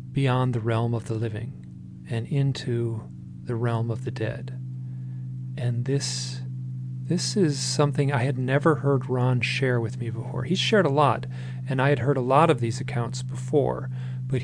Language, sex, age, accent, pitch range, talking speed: English, male, 40-59, American, 120-140 Hz, 175 wpm